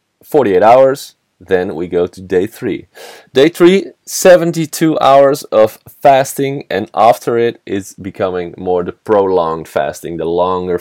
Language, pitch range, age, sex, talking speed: English, 95-140 Hz, 20-39, male, 140 wpm